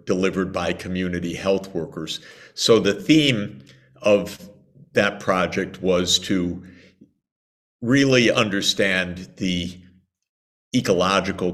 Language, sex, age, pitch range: English, male, 50-69, 90-105 Hz